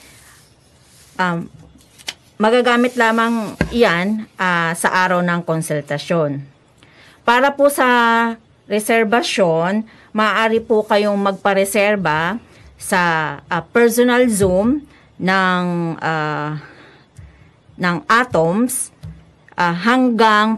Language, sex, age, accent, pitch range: Japanese, female, 40-59, Filipino, 170-230 Hz